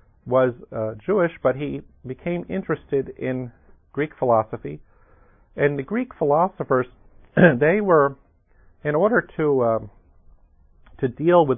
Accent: American